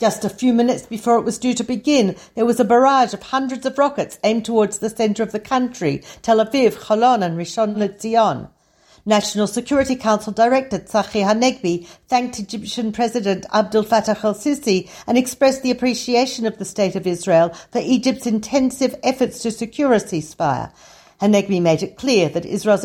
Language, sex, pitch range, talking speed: Hebrew, female, 195-245 Hz, 175 wpm